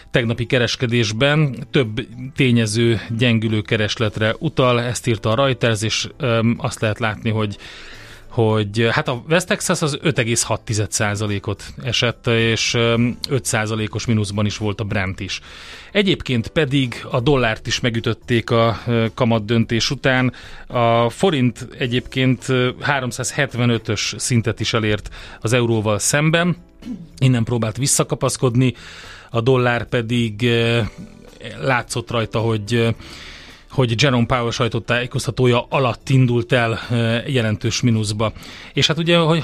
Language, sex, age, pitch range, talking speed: Hungarian, male, 30-49, 110-130 Hz, 115 wpm